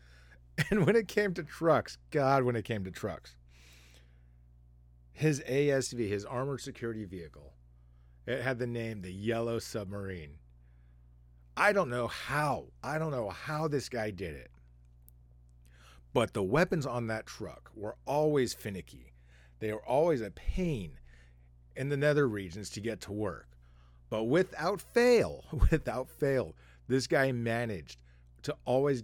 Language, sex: English, male